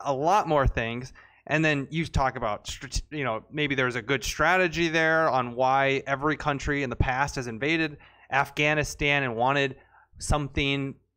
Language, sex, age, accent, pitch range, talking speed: English, male, 20-39, American, 120-150 Hz, 160 wpm